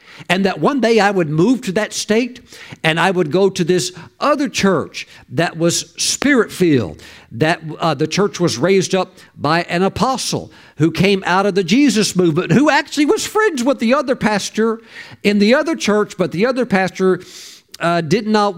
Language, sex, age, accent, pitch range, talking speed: English, male, 50-69, American, 140-195 Hz, 185 wpm